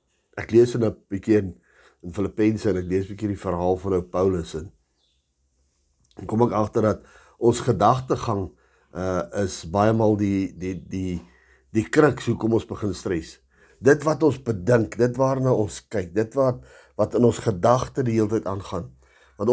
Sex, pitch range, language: male, 95-130 Hz, English